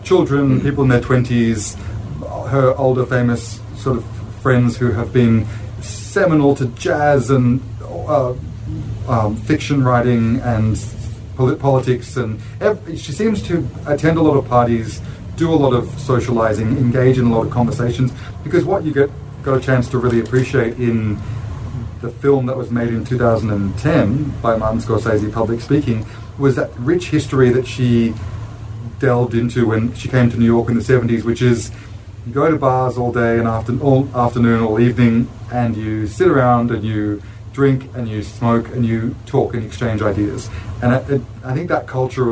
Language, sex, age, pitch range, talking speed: English, male, 30-49, 110-130 Hz, 170 wpm